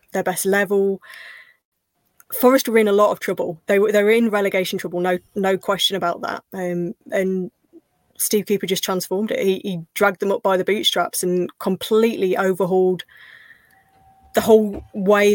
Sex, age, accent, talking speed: female, 20-39, British, 170 wpm